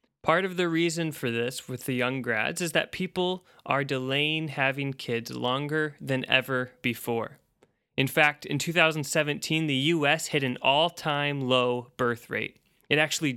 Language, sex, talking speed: English, male, 155 wpm